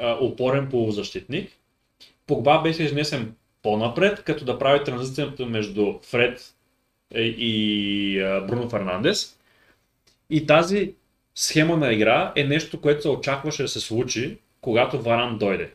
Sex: male